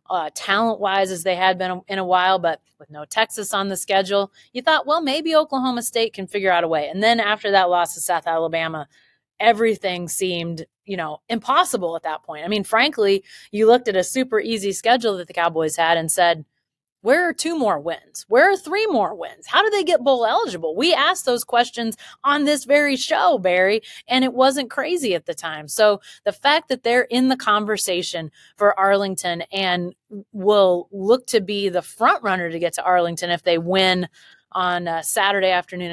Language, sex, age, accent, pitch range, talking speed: English, female, 30-49, American, 175-235 Hz, 200 wpm